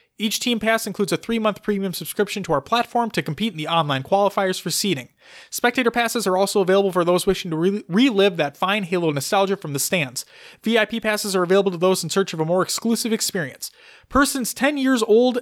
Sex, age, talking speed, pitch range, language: male, 30-49, 205 wpm, 175-235 Hz, English